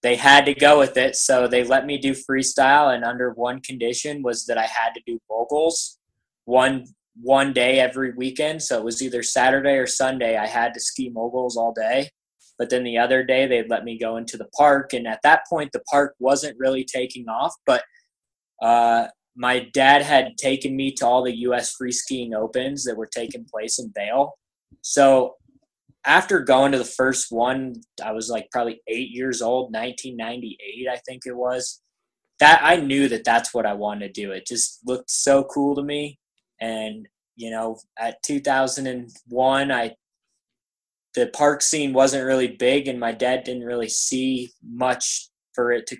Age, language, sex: 20-39, English, male